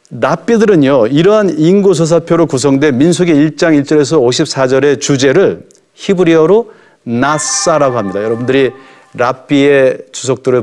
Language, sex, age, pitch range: Korean, male, 40-59, 135-180 Hz